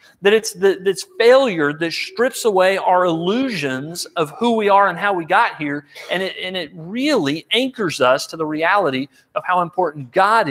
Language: English